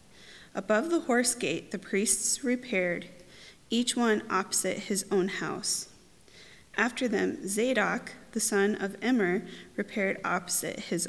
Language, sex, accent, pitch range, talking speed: English, female, American, 185-230 Hz, 125 wpm